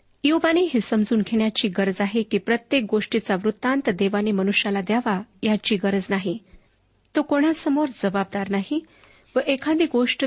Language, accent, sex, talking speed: Marathi, native, female, 135 wpm